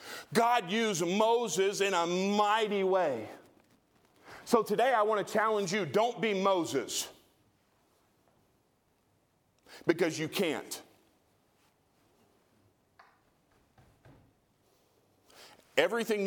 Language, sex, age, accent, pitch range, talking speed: English, male, 40-59, American, 165-215 Hz, 75 wpm